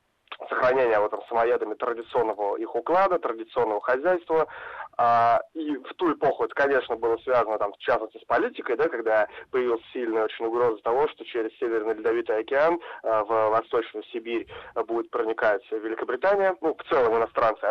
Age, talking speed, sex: 20-39, 155 wpm, male